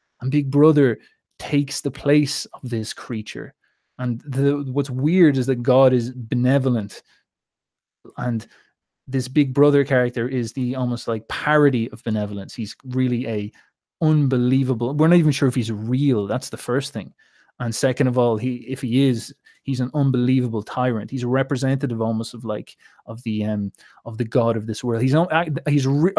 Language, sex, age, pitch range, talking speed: English, male, 20-39, 115-140 Hz, 170 wpm